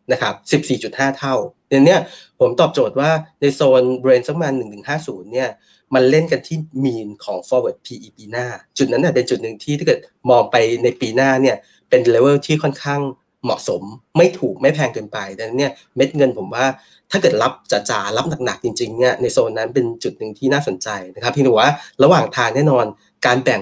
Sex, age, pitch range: male, 30-49, 125-150 Hz